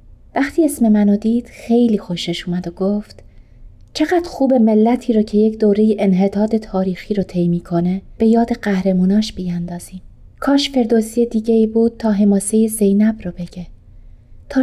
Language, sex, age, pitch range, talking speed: Persian, female, 30-49, 180-230 Hz, 145 wpm